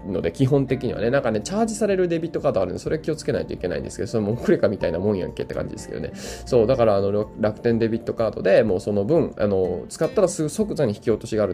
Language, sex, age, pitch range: Japanese, male, 20-39, 100-135 Hz